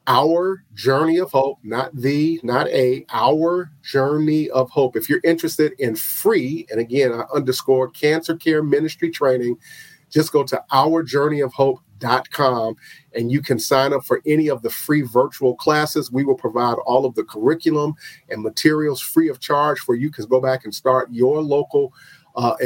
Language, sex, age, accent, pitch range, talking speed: English, male, 40-59, American, 135-165 Hz, 165 wpm